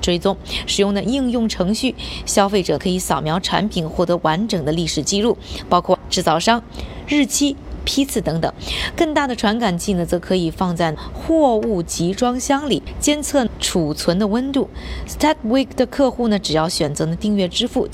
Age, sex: 20-39, female